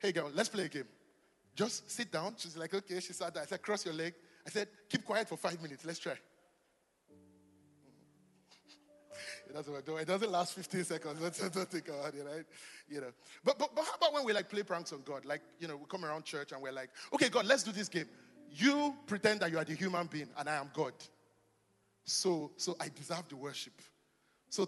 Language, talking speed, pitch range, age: English, 220 wpm, 150-205 Hz, 30-49